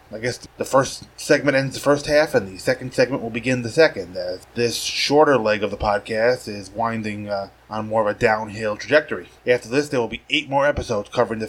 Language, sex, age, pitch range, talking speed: English, male, 20-39, 110-140 Hz, 225 wpm